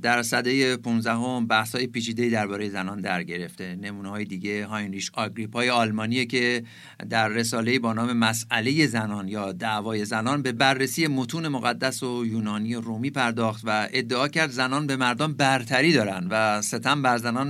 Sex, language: male, Persian